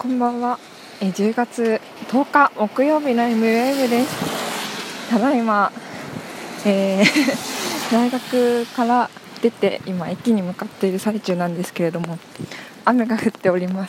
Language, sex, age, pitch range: Japanese, female, 20-39, 195-250 Hz